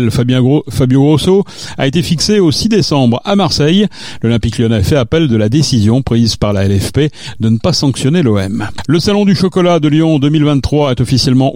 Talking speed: 190 wpm